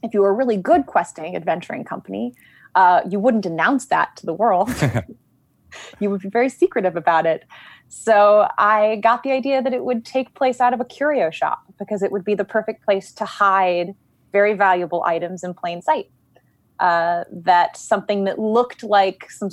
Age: 20-39